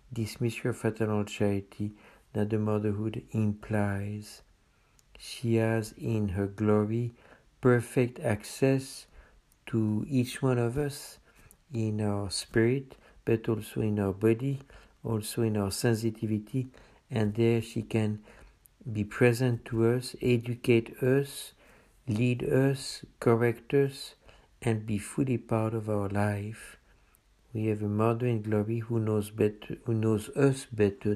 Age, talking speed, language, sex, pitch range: 60-79, 125 wpm, English, male, 105-120 Hz